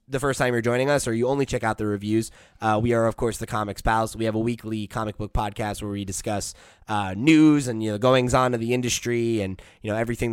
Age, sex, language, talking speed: 20-39, male, English, 265 wpm